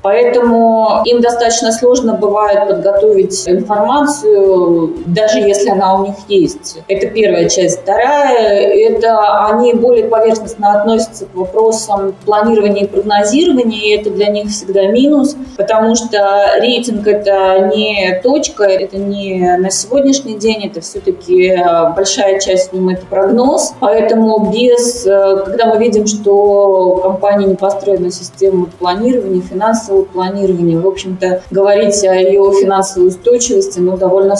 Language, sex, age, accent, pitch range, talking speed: Russian, female, 20-39, native, 185-225 Hz, 140 wpm